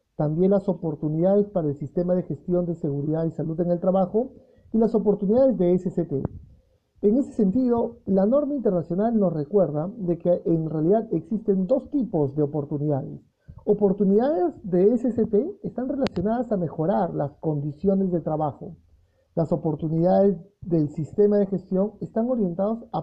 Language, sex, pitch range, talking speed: Spanish, male, 165-210 Hz, 150 wpm